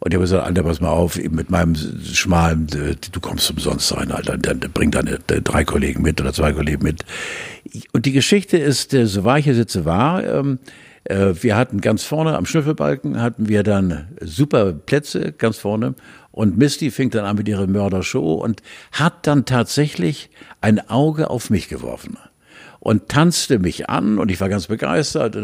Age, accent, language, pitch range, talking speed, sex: 60-79, German, German, 95-135 Hz, 175 wpm, male